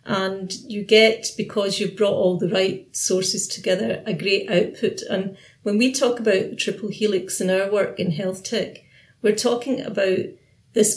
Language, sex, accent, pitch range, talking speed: English, female, British, 185-215 Hz, 175 wpm